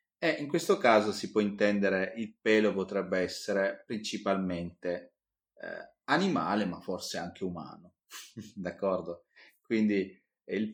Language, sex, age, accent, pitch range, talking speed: Italian, male, 30-49, native, 85-105 Hz, 115 wpm